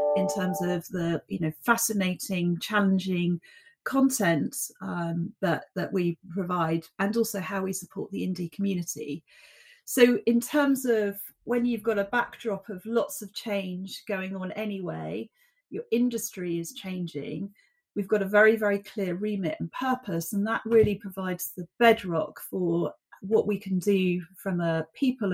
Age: 40-59